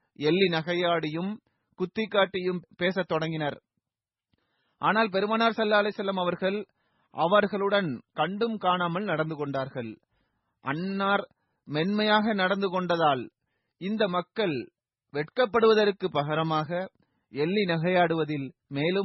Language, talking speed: Tamil, 90 wpm